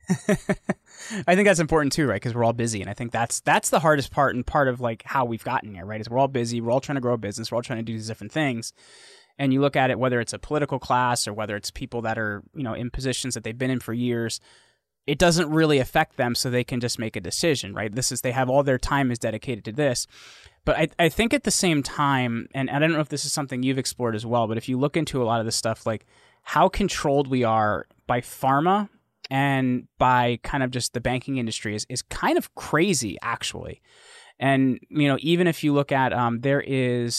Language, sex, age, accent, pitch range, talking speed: English, male, 20-39, American, 115-145 Hz, 255 wpm